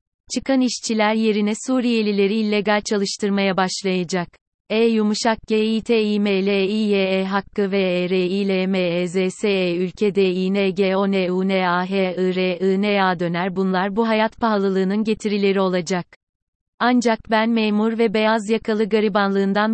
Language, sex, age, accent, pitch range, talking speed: Turkish, female, 30-49, native, 190-225 Hz, 145 wpm